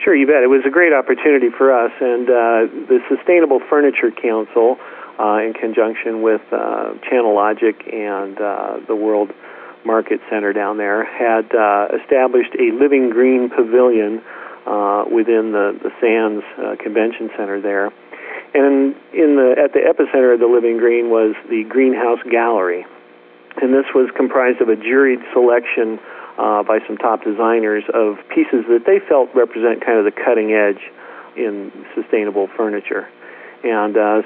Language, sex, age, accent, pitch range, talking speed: English, male, 40-59, American, 105-130 Hz, 160 wpm